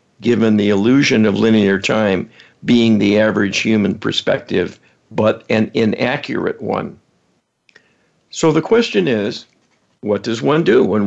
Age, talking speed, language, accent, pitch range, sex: 60-79, 130 wpm, English, American, 105-130 Hz, male